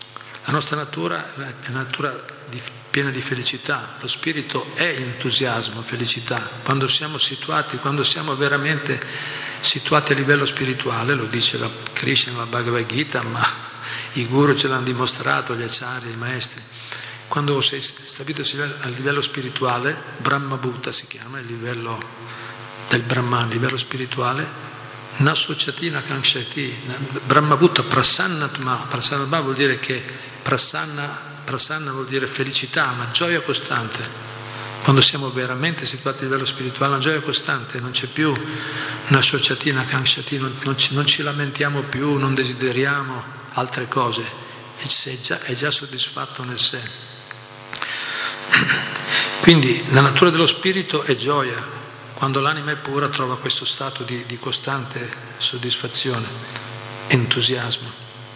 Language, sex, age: Italian, male, 50-69